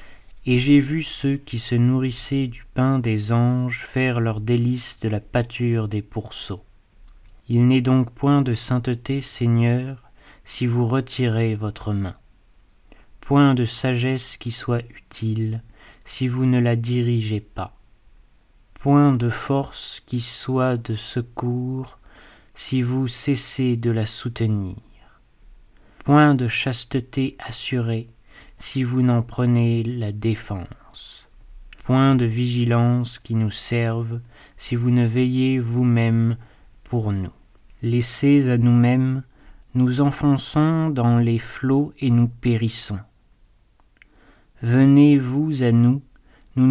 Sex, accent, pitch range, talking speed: male, French, 110-130 Hz, 120 wpm